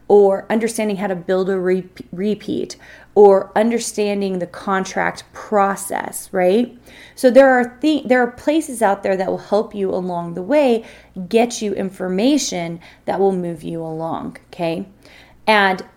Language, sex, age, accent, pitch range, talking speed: English, female, 30-49, American, 175-220 Hz, 150 wpm